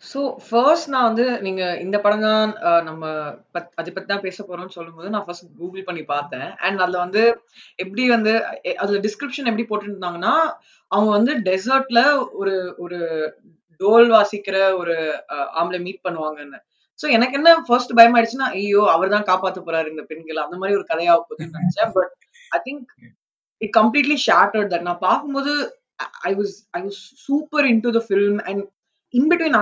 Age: 20-39